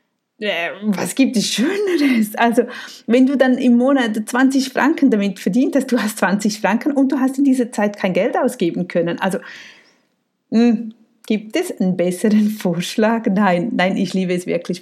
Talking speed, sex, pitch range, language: 165 wpm, female, 185-255 Hz, German